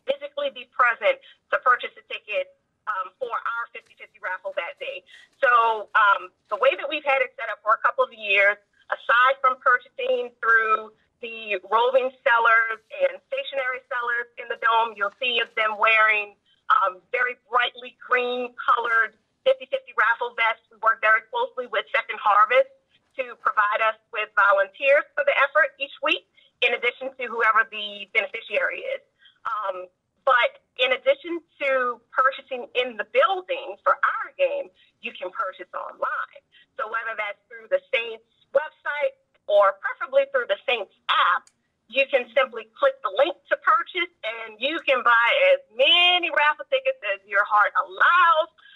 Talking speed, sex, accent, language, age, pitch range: 160 wpm, female, American, English, 40-59, 225-290 Hz